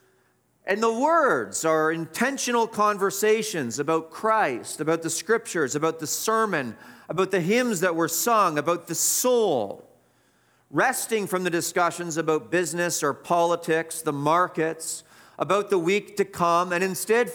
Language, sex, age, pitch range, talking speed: English, male, 40-59, 145-200 Hz, 140 wpm